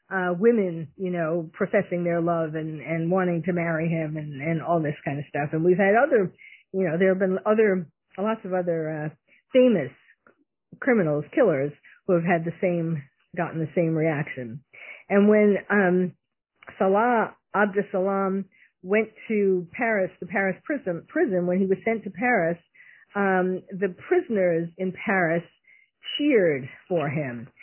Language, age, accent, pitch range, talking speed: English, 50-69, American, 175-230 Hz, 160 wpm